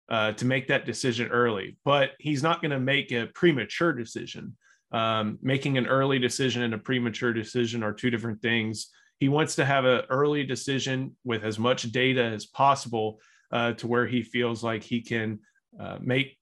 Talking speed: 185 wpm